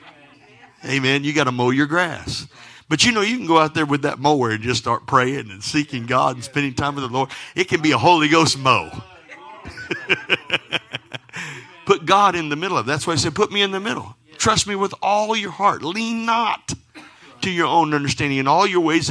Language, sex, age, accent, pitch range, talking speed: English, male, 50-69, American, 130-170 Hz, 220 wpm